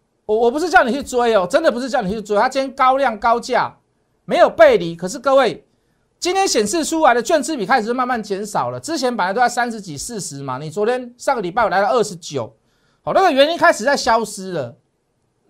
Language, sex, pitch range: Chinese, male, 150-250 Hz